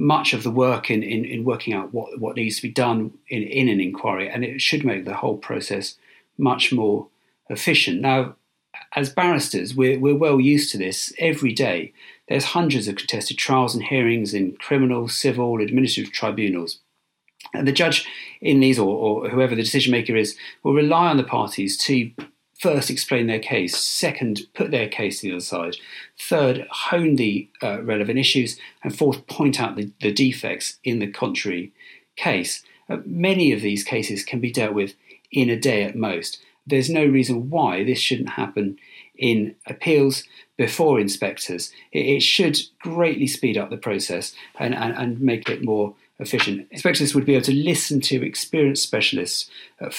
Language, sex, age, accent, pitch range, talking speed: English, male, 40-59, British, 110-140 Hz, 180 wpm